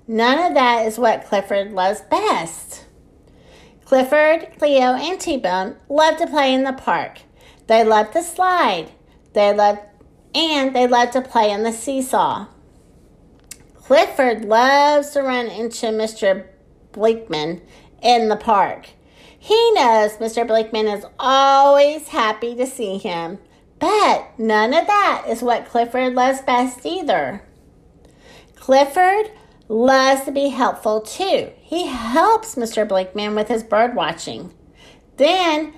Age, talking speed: 50-69, 130 wpm